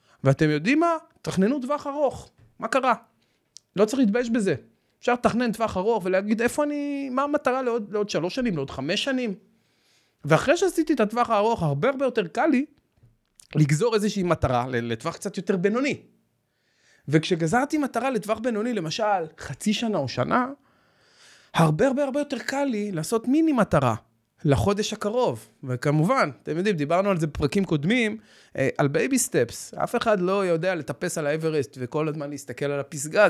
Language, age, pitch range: Hebrew, 30-49, 145-225 Hz